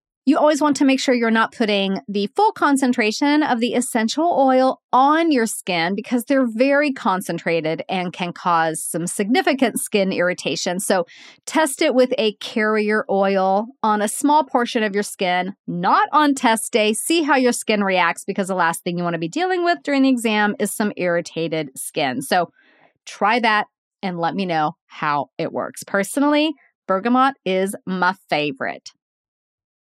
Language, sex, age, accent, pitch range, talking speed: English, female, 30-49, American, 195-275 Hz, 170 wpm